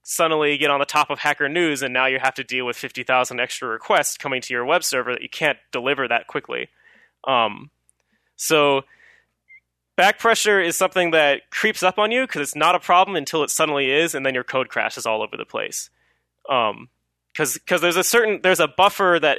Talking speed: 215 wpm